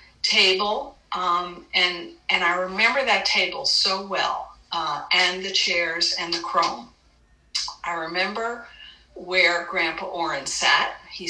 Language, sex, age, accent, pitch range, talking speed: English, female, 60-79, American, 170-215 Hz, 125 wpm